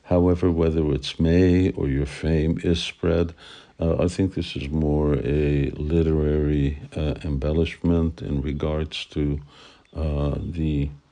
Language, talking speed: English, 130 wpm